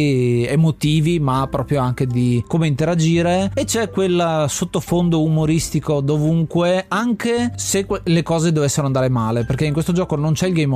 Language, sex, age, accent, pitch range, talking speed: Italian, male, 30-49, native, 135-165 Hz, 155 wpm